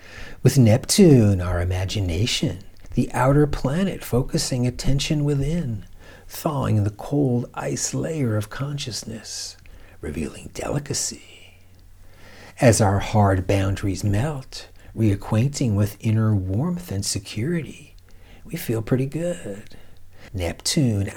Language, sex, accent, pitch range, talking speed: English, male, American, 95-125 Hz, 100 wpm